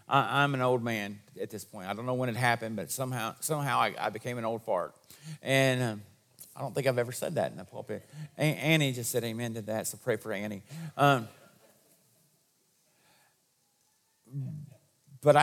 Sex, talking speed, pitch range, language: male, 185 wpm, 120-170 Hz, English